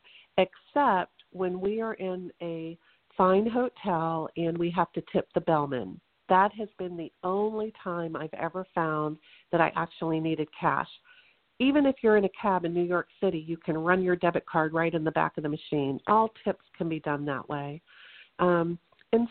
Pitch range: 165-215 Hz